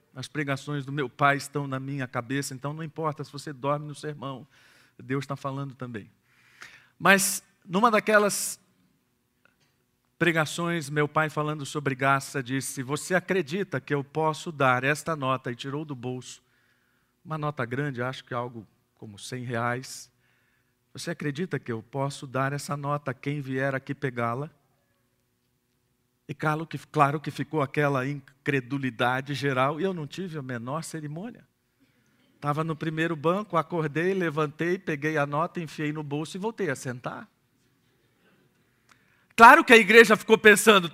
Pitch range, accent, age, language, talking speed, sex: 135-185 Hz, Brazilian, 50-69, Portuguese, 150 wpm, male